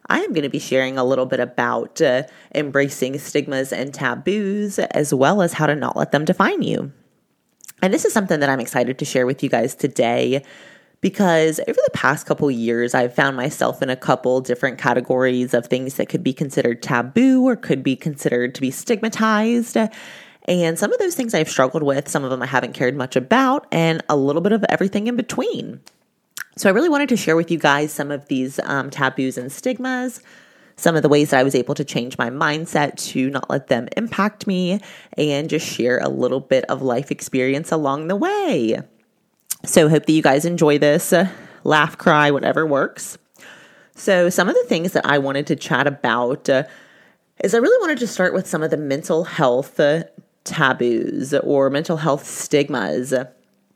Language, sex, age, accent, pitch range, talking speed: English, female, 20-39, American, 130-180 Hz, 200 wpm